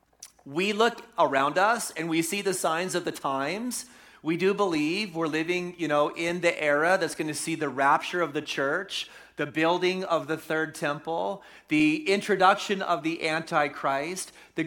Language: English